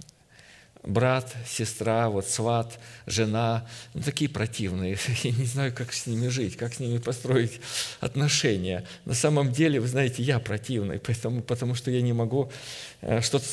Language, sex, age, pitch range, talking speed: Russian, male, 50-69, 100-125 Hz, 150 wpm